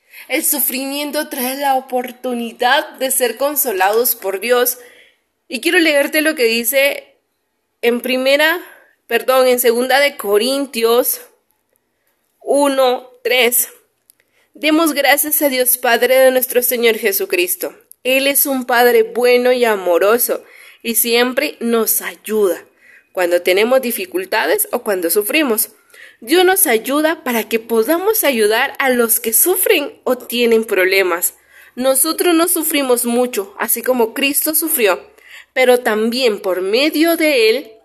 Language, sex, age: Spanish, female, 30-49